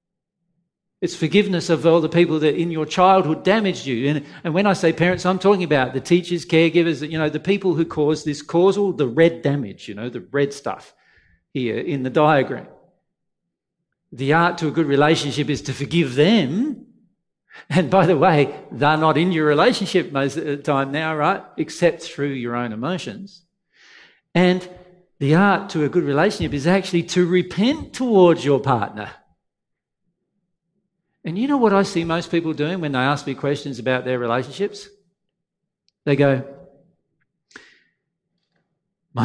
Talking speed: 165 wpm